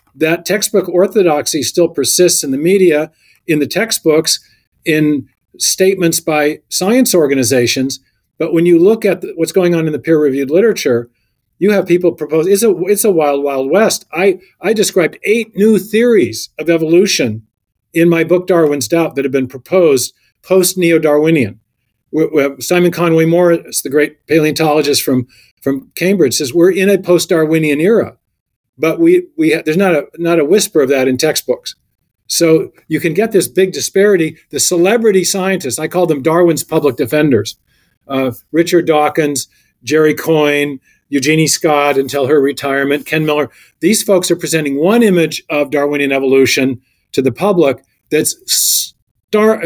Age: 50-69